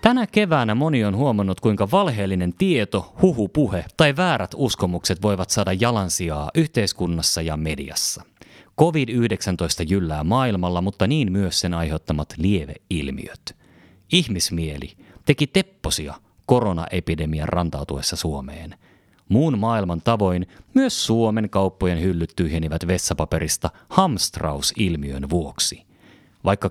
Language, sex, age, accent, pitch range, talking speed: Finnish, male, 30-49, native, 85-115 Hz, 100 wpm